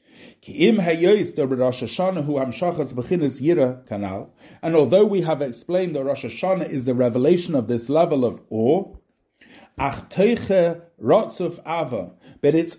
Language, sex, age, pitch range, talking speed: English, male, 50-69, 140-185 Hz, 85 wpm